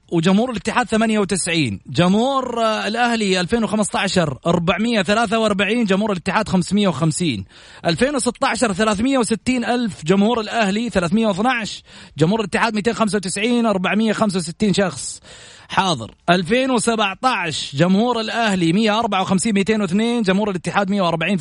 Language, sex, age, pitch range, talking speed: Arabic, male, 30-49, 170-225 Hz, 80 wpm